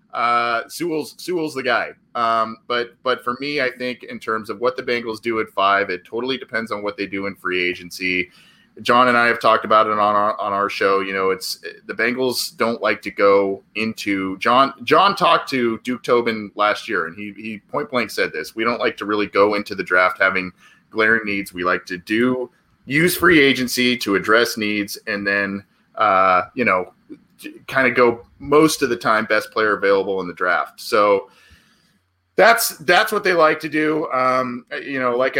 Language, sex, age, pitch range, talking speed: English, male, 20-39, 105-140 Hz, 200 wpm